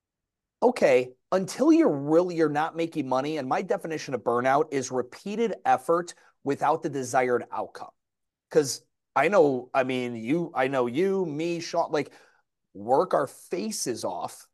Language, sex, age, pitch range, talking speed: English, male, 30-49, 135-185 Hz, 150 wpm